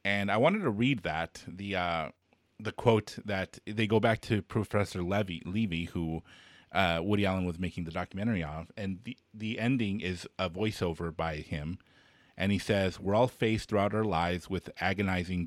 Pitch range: 90-110 Hz